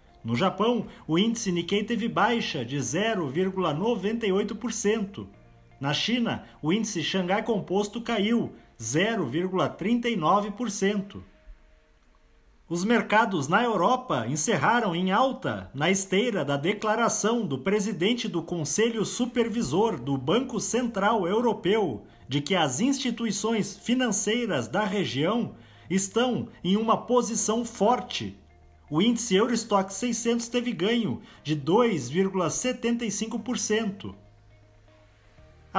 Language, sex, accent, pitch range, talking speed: Portuguese, male, Brazilian, 170-230 Hz, 95 wpm